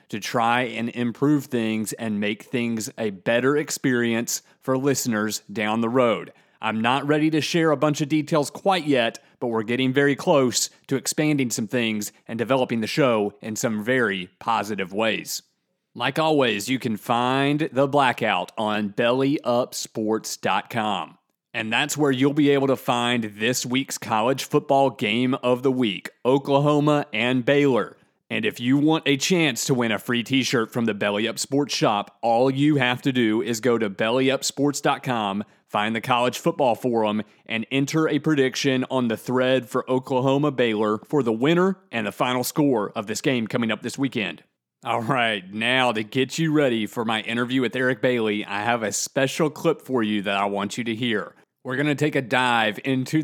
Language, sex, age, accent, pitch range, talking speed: English, male, 30-49, American, 115-140 Hz, 180 wpm